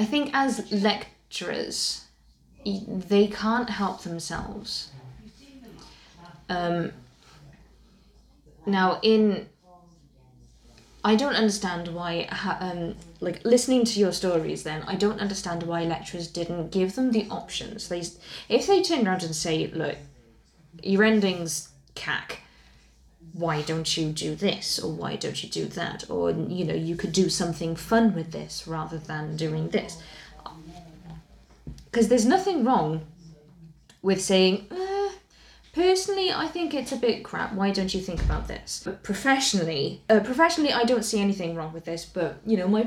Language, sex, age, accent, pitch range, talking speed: English, female, 20-39, British, 160-210 Hz, 145 wpm